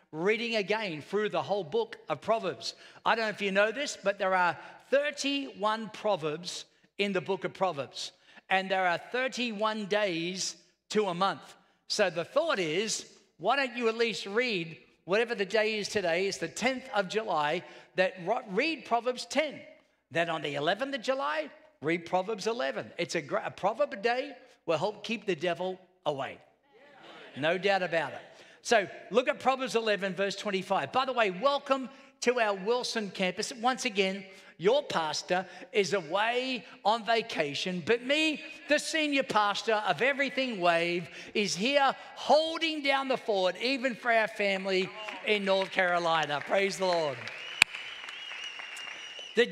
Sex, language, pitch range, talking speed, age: male, English, 185-265 Hz, 160 wpm, 50-69